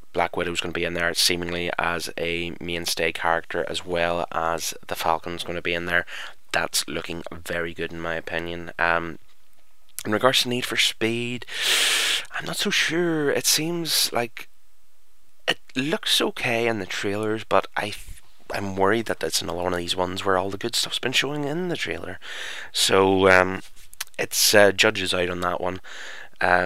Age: 20-39